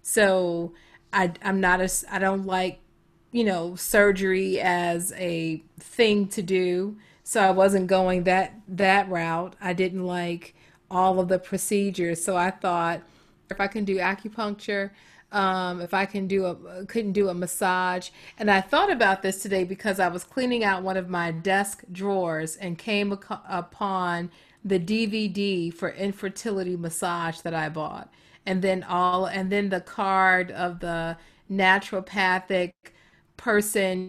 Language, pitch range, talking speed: English, 175-195 Hz, 155 wpm